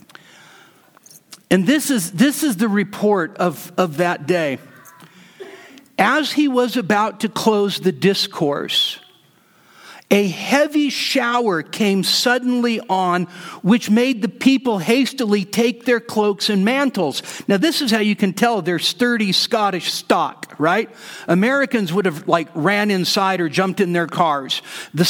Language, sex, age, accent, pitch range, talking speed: English, male, 50-69, American, 190-245 Hz, 140 wpm